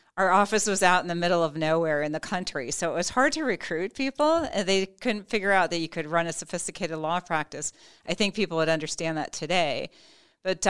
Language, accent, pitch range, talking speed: English, American, 155-195 Hz, 220 wpm